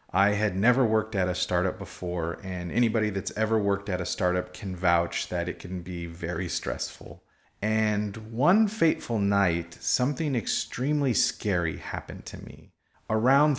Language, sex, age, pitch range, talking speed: English, male, 30-49, 90-110 Hz, 155 wpm